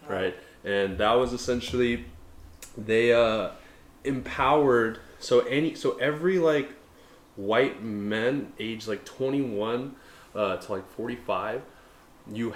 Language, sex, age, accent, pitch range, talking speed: English, male, 20-39, American, 100-130 Hz, 110 wpm